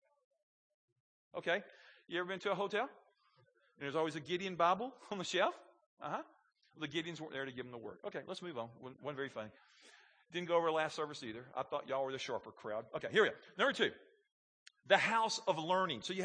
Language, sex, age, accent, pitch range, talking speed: English, male, 40-59, American, 180-255 Hz, 220 wpm